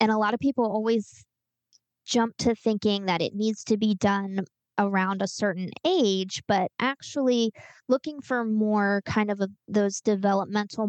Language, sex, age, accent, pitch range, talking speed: English, female, 20-39, American, 190-225 Hz, 160 wpm